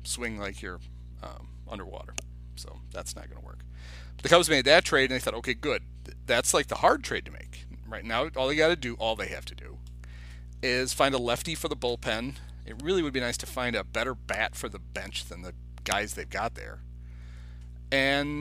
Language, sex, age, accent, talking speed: English, male, 40-59, American, 220 wpm